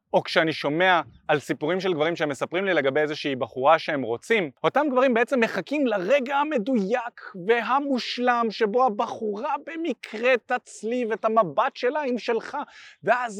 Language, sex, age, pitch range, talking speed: Hebrew, male, 20-39, 160-235 Hz, 145 wpm